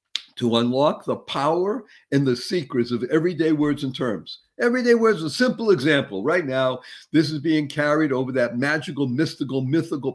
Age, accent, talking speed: 50-69, American, 170 wpm